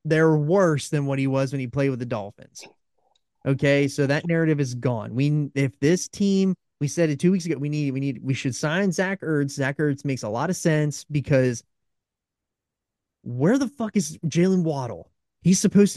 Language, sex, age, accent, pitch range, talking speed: English, male, 30-49, American, 130-155 Hz, 200 wpm